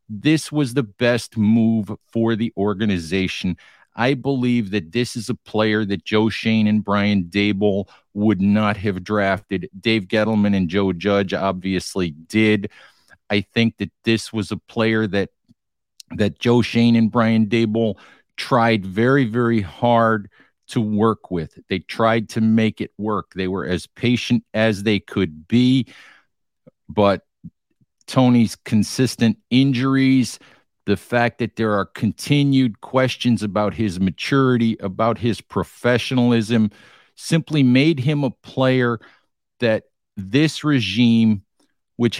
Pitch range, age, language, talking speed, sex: 105-120 Hz, 50-69, English, 130 wpm, male